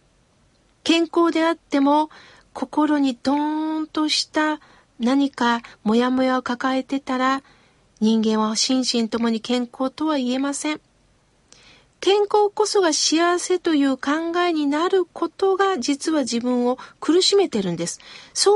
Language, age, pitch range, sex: Japanese, 40-59, 240-320 Hz, female